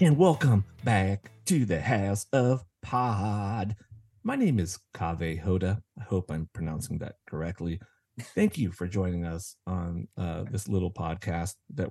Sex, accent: male, American